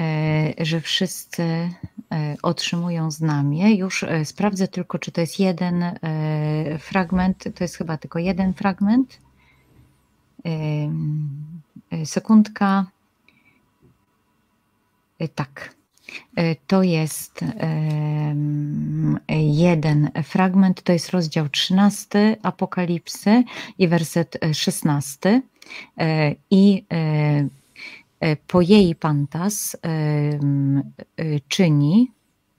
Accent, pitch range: native, 150-190 Hz